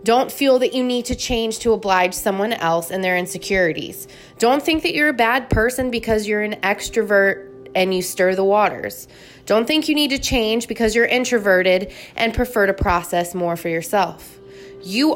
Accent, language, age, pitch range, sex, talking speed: American, English, 20-39, 180-245 Hz, female, 185 wpm